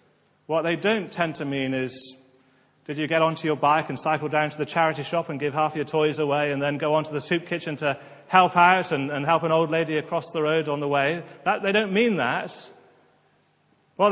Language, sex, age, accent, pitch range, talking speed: English, male, 40-59, British, 145-185 Hz, 230 wpm